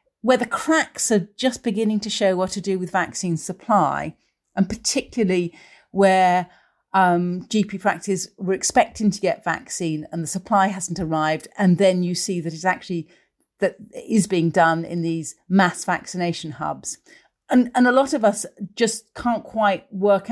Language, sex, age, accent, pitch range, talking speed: English, female, 40-59, British, 170-210 Hz, 165 wpm